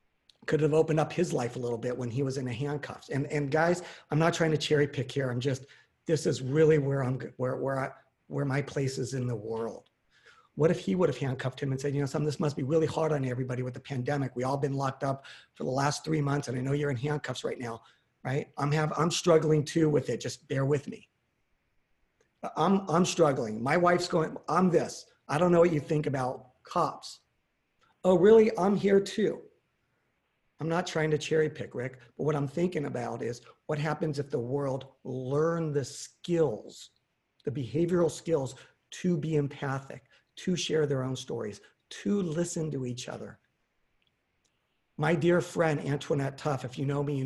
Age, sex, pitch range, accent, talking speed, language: 40-59, male, 135-160 Hz, American, 205 wpm, English